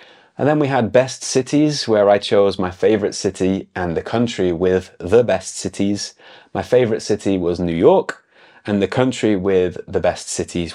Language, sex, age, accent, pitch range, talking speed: English, male, 30-49, British, 95-120 Hz, 180 wpm